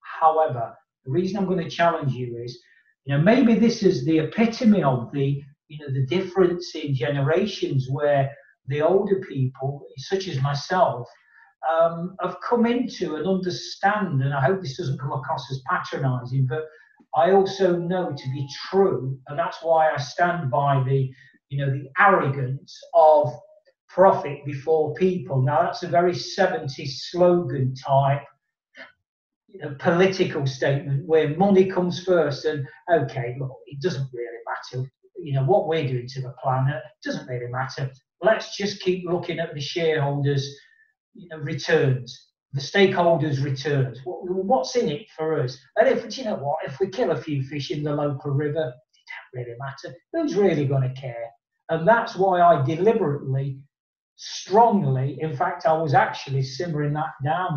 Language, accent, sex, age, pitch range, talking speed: English, British, male, 40-59, 135-180 Hz, 165 wpm